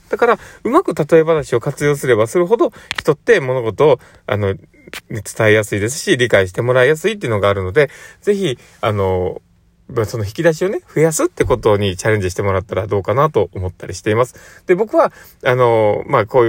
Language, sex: Japanese, male